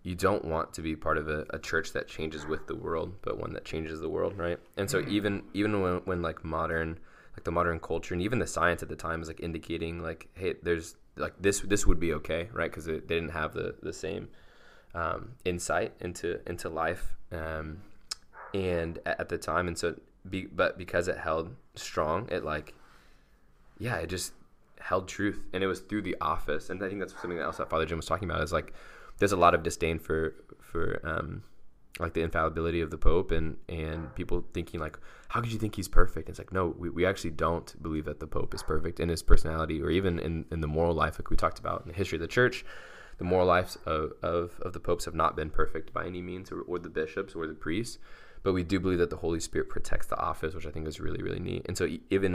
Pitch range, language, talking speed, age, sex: 80-90 Hz, English, 240 wpm, 20-39, male